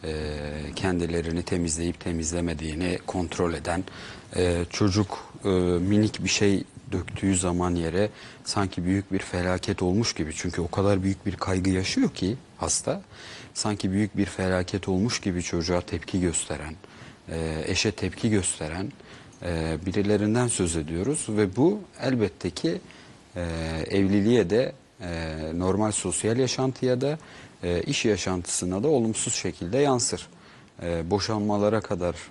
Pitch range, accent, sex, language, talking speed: 85-105 Hz, native, male, Turkish, 115 wpm